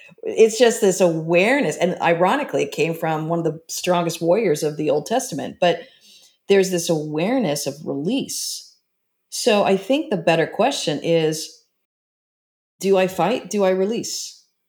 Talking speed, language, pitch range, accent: 150 wpm, English, 165-210 Hz, American